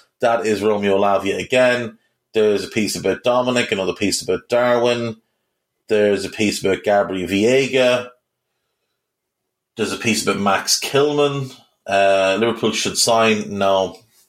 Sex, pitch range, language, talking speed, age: male, 105-145 Hz, English, 130 wpm, 30-49